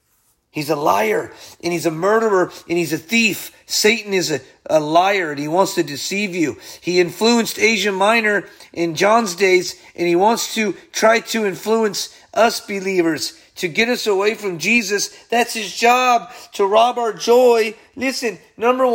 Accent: American